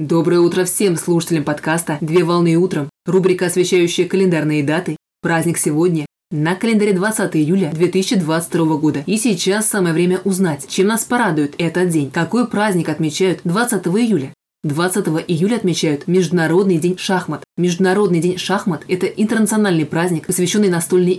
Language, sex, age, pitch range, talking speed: Russian, female, 20-39, 165-195 Hz, 140 wpm